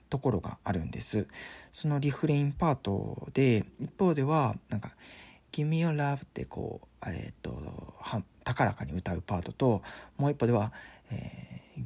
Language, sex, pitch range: Japanese, male, 95-135 Hz